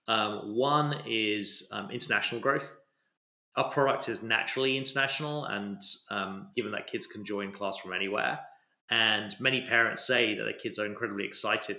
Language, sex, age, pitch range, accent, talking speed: English, male, 30-49, 105-125 Hz, British, 160 wpm